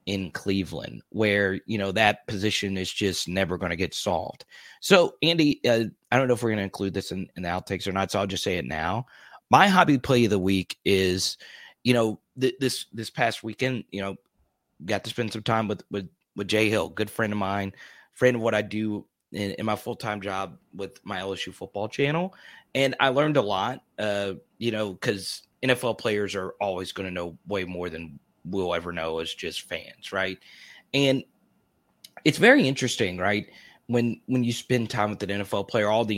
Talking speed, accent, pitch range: 205 wpm, American, 95-120 Hz